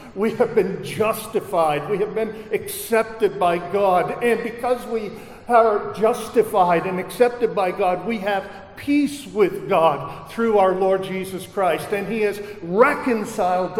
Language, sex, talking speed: English, male, 145 wpm